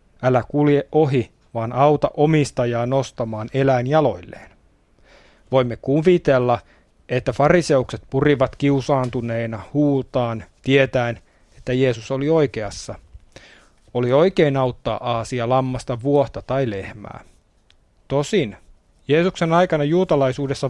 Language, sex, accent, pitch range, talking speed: Finnish, male, native, 115-145 Hz, 95 wpm